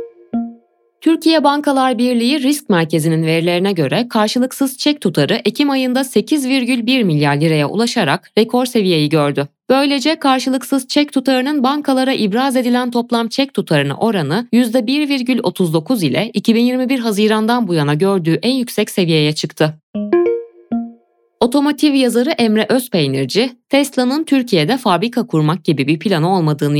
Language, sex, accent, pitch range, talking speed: Turkish, female, native, 165-260 Hz, 120 wpm